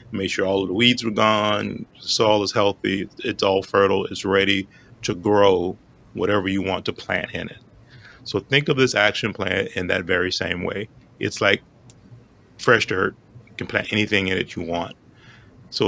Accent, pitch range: American, 95-115 Hz